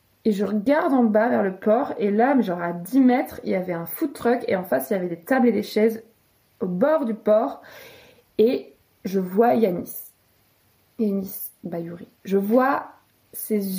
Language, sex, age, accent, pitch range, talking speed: French, female, 20-39, French, 205-260 Hz, 190 wpm